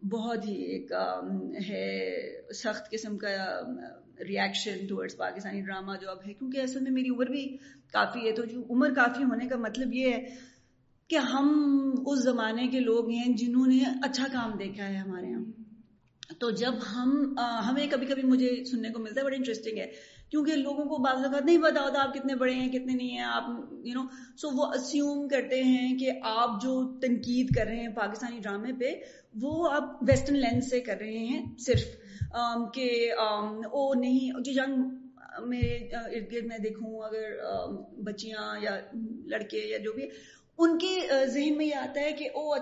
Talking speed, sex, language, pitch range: 180 wpm, female, Urdu, 225-270 Hz